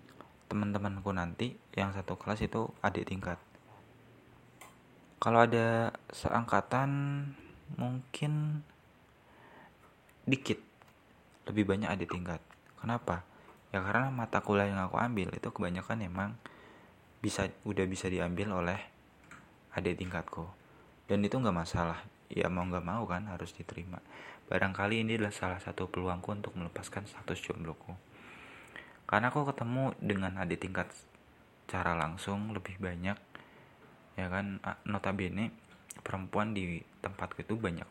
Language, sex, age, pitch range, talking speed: Indonesian, male, 20-39, 90-110 Hz, 115 wpm